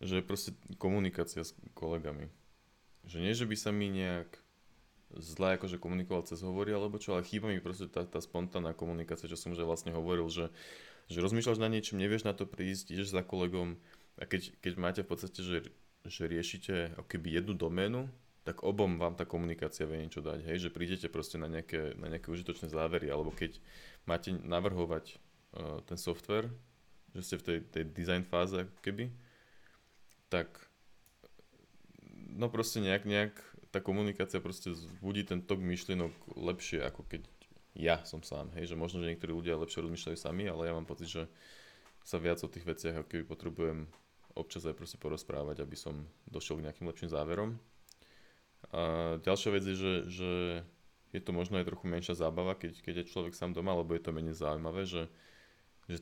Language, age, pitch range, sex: Slovak, 20-39, 85-95 Hz, male